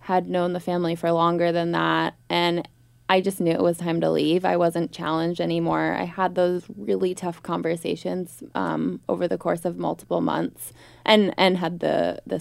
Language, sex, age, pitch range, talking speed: English, female, 20-39, 150-185 Hz, 190 wpm